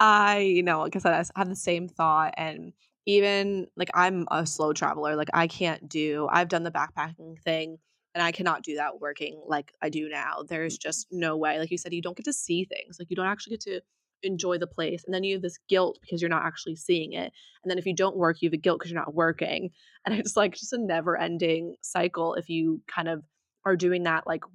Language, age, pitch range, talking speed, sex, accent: English, 20-39, 165-185 Hz, 235 wpm, female, American